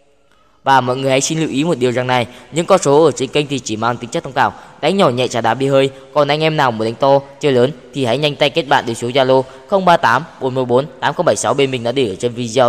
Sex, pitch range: female, 120-140 Hz